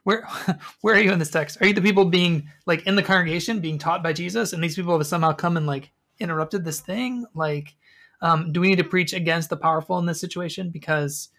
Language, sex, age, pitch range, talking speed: English, male, 20-39, 150-185 Hz, 235 wpm